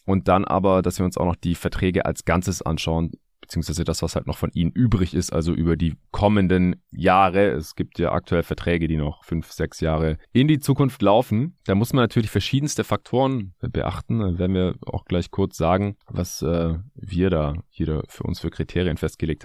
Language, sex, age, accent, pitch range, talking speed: German, male, 30-49, German, 85-110 Hz, 200 wpm